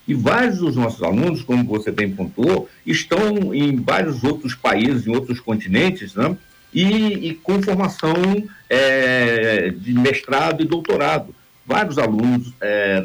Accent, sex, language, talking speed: Brazilian, male, Portuguese, 140 wpm